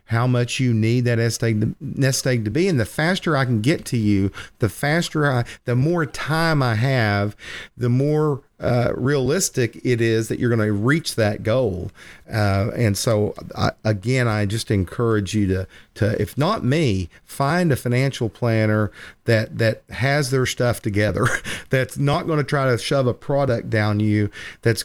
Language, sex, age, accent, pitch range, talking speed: English, male, 40-59, American, 105-130 Hz, 175 wpm